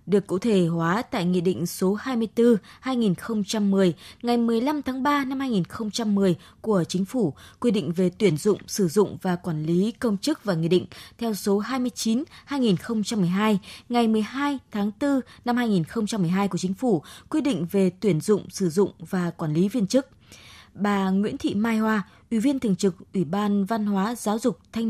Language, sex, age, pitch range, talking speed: Vietnamese, female, 20-39, 180-240 Hz, 175 wpm